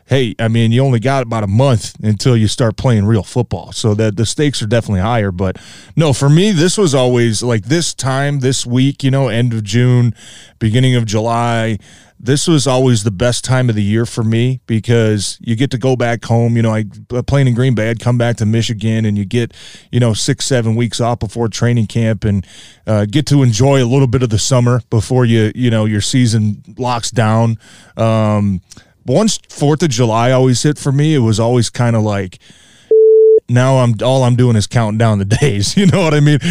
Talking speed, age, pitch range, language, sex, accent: 215 wpm, 20-39, 110-130 Hz, English, male, American